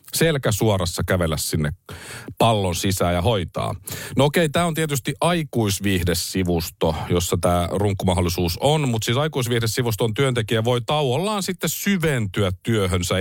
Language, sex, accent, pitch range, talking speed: Finnish, male, native, 95-120 Hz, 125 wpm